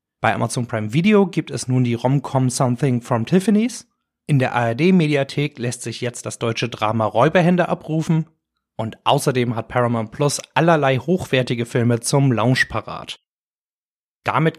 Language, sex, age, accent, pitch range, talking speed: German, male, 30-49, German, 120-155 Hz, 145 wpm